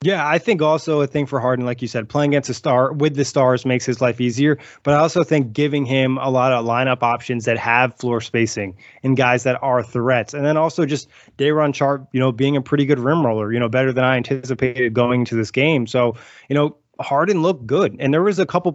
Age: 20-39